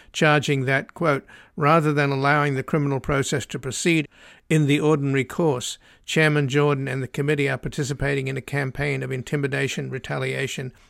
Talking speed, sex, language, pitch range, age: 155 wpm, male, English, 130-150 Hz, 50-69